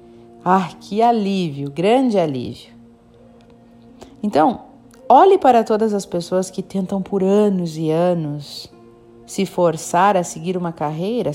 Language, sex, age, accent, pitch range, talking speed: Portuguese, female, 40-59, Brazilian, 150-220 Hz, 120 wpm